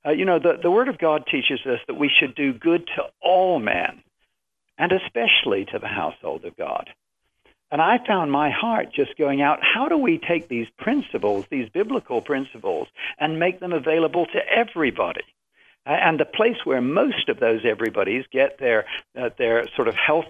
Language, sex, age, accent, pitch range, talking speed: English, male, 60-79, American, 125-170 Hz, 190 wpm